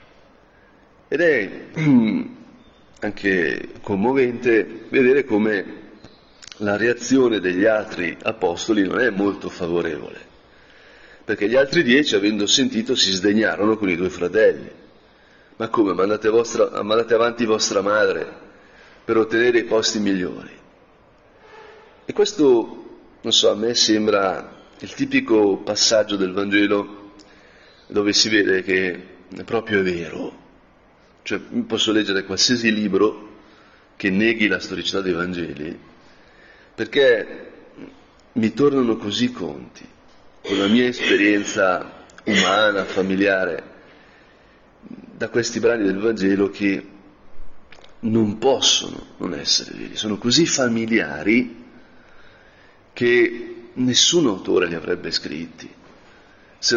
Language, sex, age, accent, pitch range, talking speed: Italian, male, 40-59, native, 100-135 Hz, 105 wpm